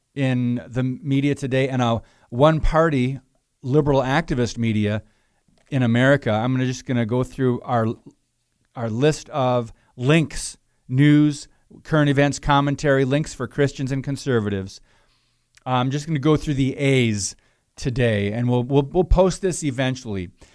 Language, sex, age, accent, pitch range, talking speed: English, male, 40-59, American, 120-145 Hz, 145 wpm